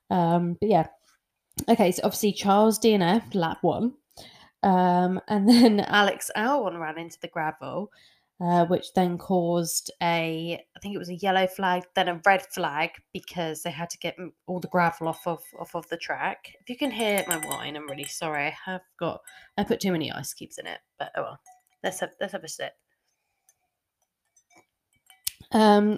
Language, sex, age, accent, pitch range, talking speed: English, female, 20-39, British, 175-215 Hz, 180 wpm